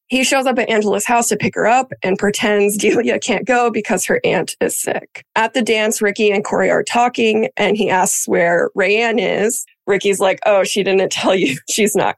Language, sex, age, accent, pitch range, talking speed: English, female, 20-39, American, 195-245 Hz, 210 wpm